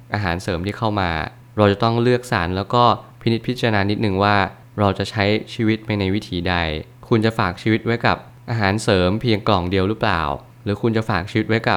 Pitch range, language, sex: 95-115 Hz, Thai, male